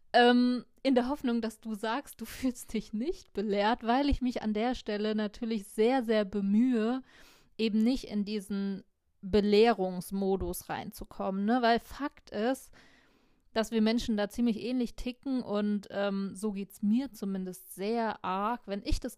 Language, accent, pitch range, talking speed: German, German, 210-250 Hz, 155 wpm